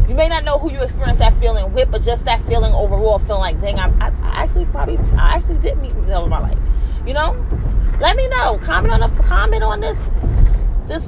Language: English